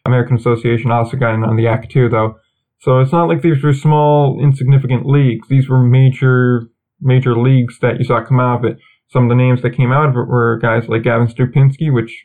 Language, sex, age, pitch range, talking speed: English, male, 20-39, 115-130 Hz, 225 wpm